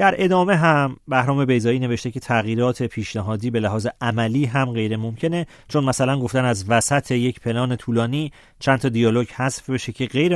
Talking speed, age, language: 175 wpm, 40-59, Persian